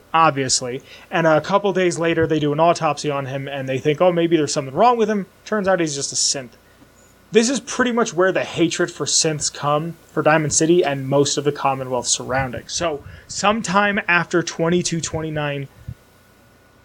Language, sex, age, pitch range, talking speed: English, male, 30-49, 140-185 Hz, 180 wpm